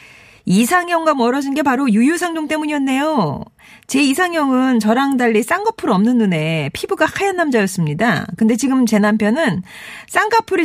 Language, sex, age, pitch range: Korean, female, 40-59, 190-310 Hz